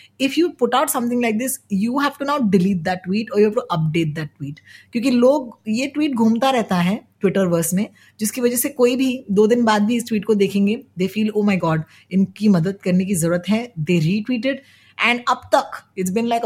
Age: 20-39